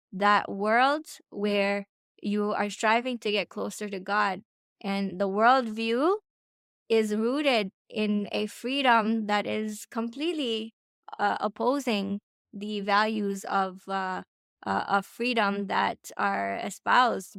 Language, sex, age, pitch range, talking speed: English, female, 20-39, 205-250 Hz, 115 wpm